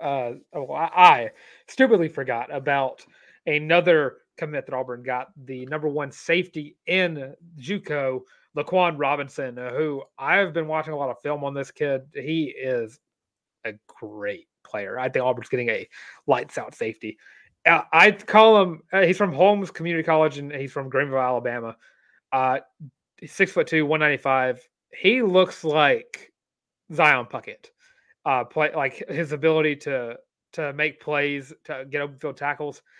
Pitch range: 140-190 Hz